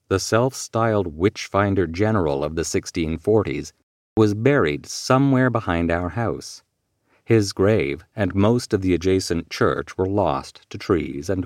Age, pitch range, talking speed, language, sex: 40-59, 90-115 Hz, 135 wpm, English, male